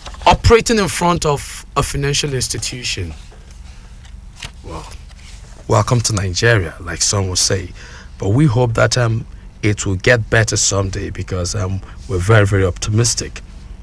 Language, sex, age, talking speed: English, male, 50-69, 135 wpm